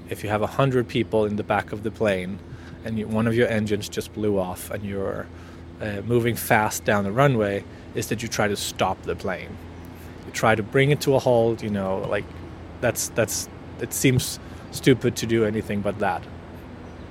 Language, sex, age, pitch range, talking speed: English, male, 20-39, 95-135 Hz, 200 wpm